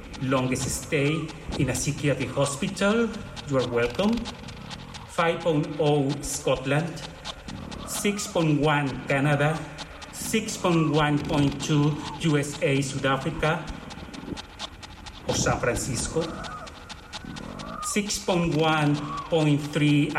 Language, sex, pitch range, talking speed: English, male, 140-170 Hz, 60 wpm